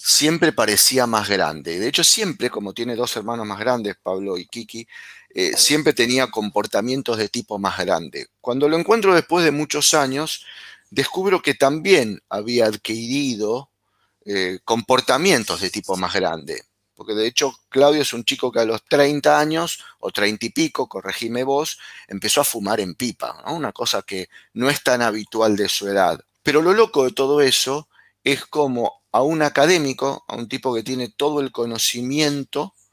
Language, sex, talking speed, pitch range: Spanish, male, 170 wpm, 115-150 Hz